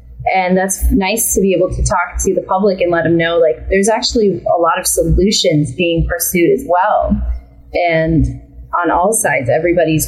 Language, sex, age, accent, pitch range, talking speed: English, female, 30-49, American, 160-195 Hz, 185 wpm